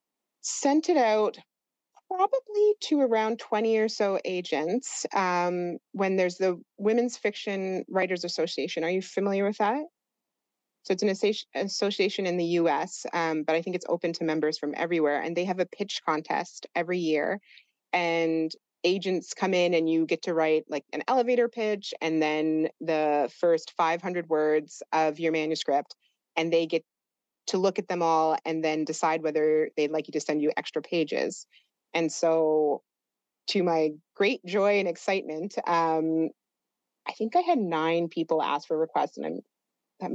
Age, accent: 30-49, American